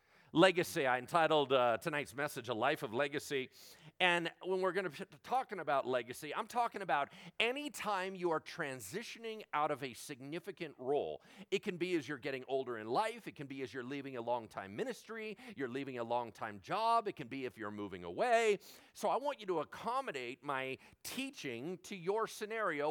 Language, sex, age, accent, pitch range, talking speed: English, male, 50-69, American, 135-190 Hz, 190 wpm